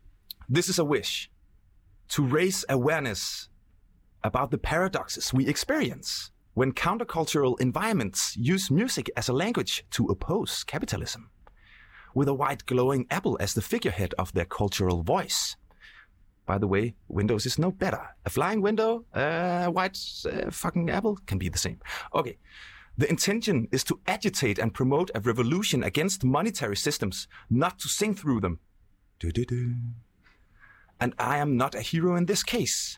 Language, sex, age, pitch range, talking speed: Danish, male, 30-49, 110-175 Hz, 155 wpm